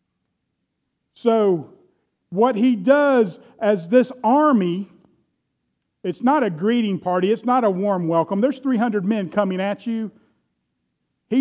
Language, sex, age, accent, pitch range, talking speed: English, male, 50-69, American, 195-250 Hz, 125 wpm